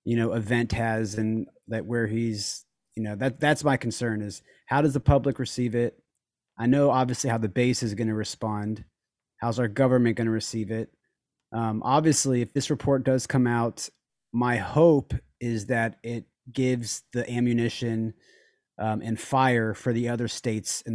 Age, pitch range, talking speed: 30-49, 110-130 Hz, 180 wpm